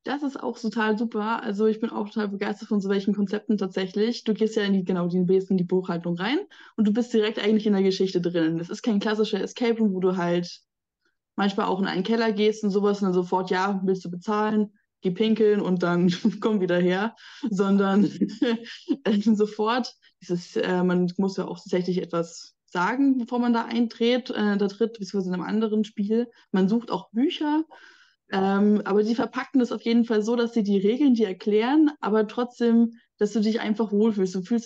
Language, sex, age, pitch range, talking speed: German, female, 20-39, 190-230 Hz, 205 wpm